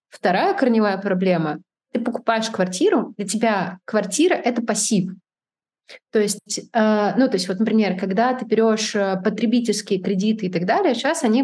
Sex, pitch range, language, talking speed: female, 185-240 Hz, Russian, 145 wpm